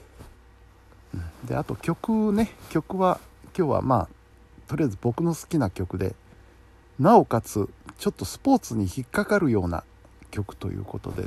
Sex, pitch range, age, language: male, 95-135 Hz, 60-79, Japanese